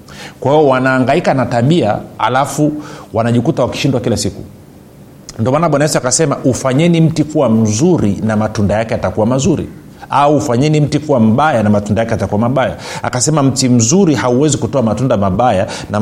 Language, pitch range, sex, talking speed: Swahili, 110-145 Hz, male, 150 wpm